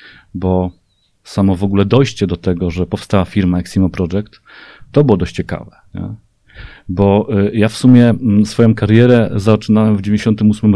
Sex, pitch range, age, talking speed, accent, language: male, 95-115 Hz, 40-59, 140 wpm, native, Polish